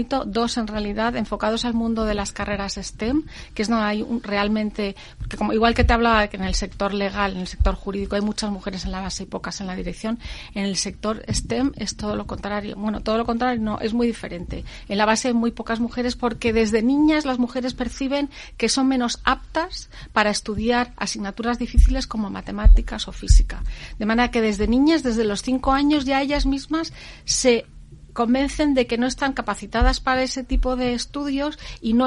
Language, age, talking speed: Spanish, 40-59, 205 wpm